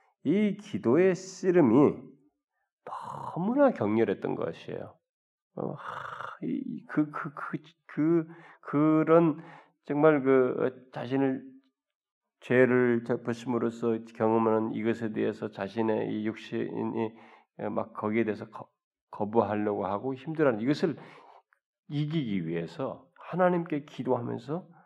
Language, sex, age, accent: Korean, male, 40-59, native